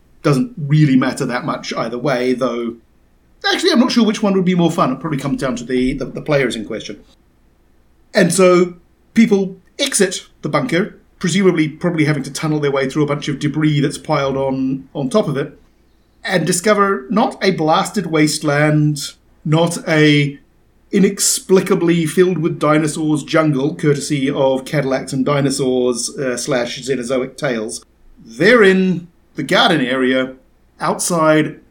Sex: male